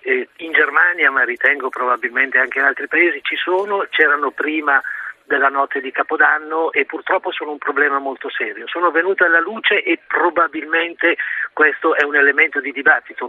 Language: Italian